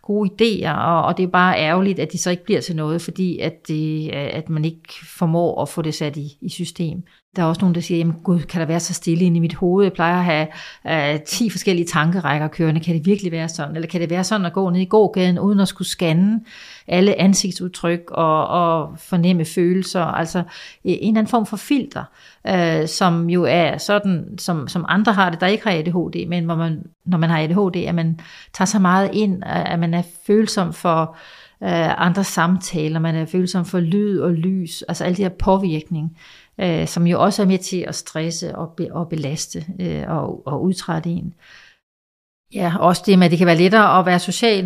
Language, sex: Danish, female